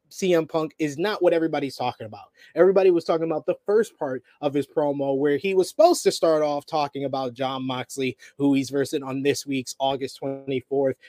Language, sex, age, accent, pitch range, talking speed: English, male, 20-39, American, 135-165 Hz, 200 wpm